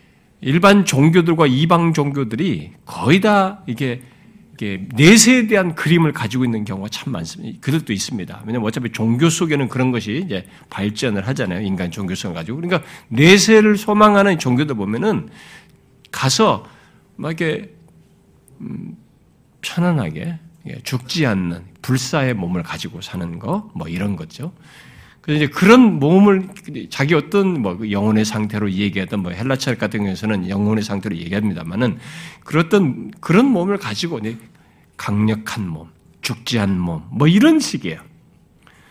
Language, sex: Korean, male